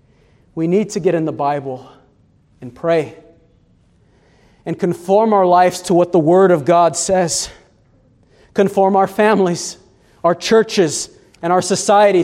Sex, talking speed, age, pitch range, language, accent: male, 135 wpm, 40-59, 160-190 Hz, English, American